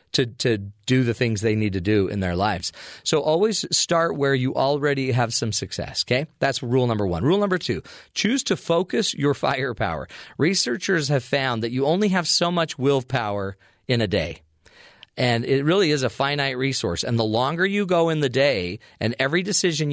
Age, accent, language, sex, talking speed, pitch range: 40-59, American, English, male, 195 wpm, 110-145 Hz